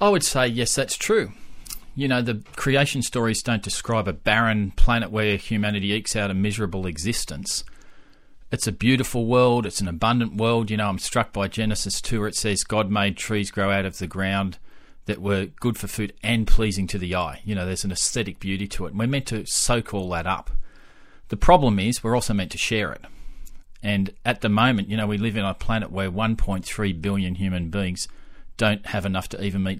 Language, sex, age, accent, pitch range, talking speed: English, male, 40-59, Australian, 95-110 Hz, 210 wpm